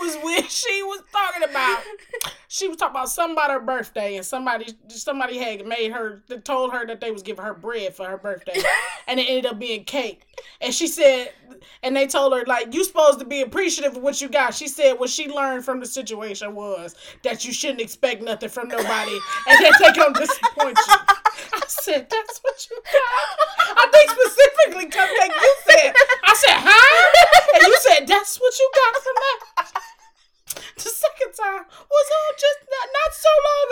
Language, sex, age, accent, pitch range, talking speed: English, female, 20-39, American, 275-430 Hz, 200 wpm